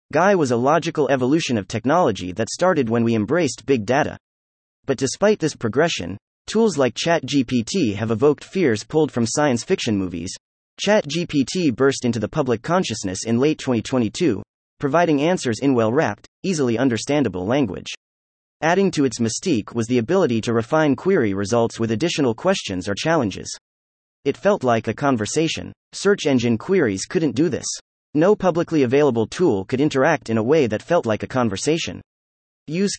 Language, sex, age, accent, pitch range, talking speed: English, male, 30-49, American, 105-155 Hz, 160 wpm